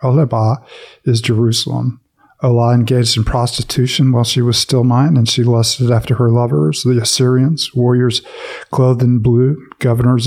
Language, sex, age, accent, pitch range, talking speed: English, male, 50-69, American, 115-125 Hz, 145 wpm